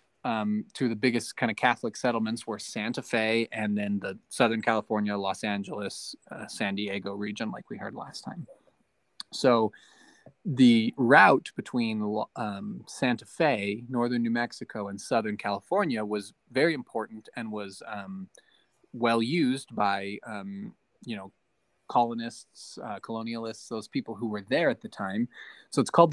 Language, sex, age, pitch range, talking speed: English, male, 20-39, 105-135 Hz, 150 wpm